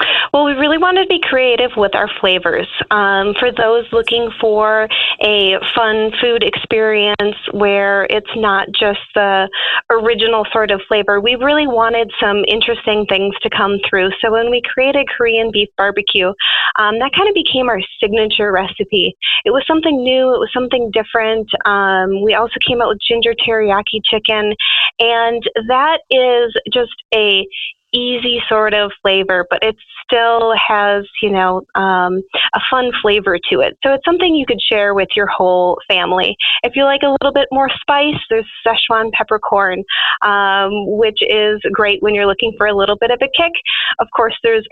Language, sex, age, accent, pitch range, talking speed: English, female, 30-49, American, 200-245 Hz, 175 wpm